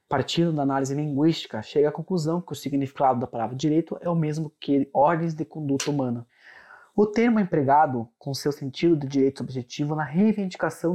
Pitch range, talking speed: 140-175 Hz, 180 wpm